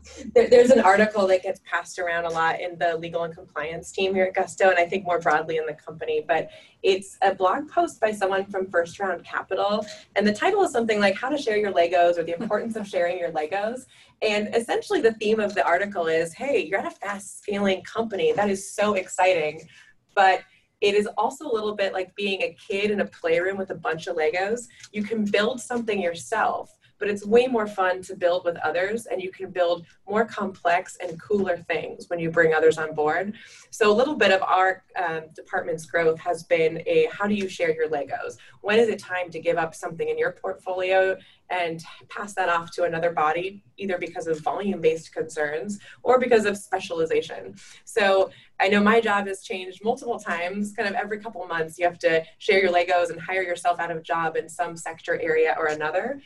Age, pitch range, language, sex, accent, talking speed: 20-39, 175-220 Hz, English, female, American, 215 wpm